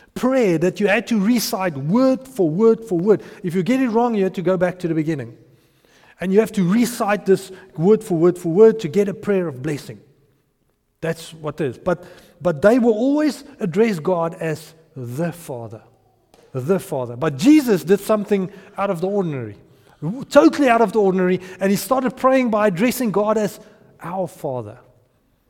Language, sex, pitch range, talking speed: English, male, 160-230 Hz, 190 wpm